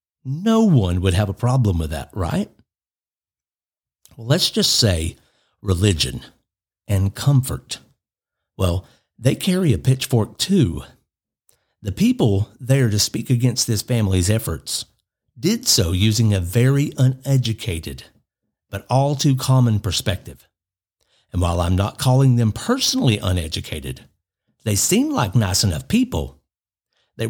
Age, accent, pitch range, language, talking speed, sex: 50-69, American, 95-125 Hz, English, 125 wpm, male